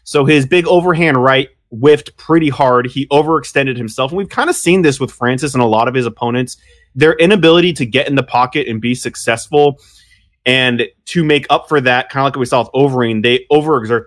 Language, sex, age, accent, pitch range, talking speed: English, male, 20-39, American, 120-150 Hz, 220 wpm